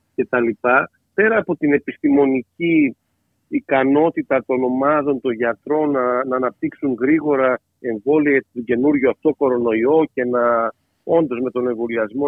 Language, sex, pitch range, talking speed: Greek, male, 125-170 Hz, 130 wpm